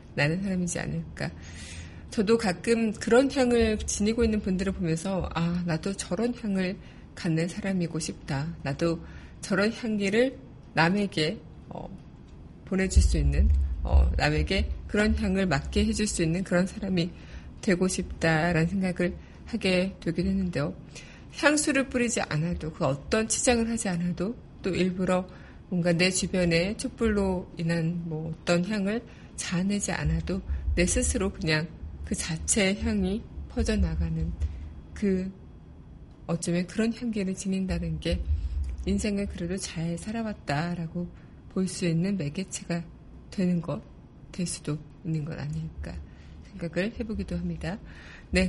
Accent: native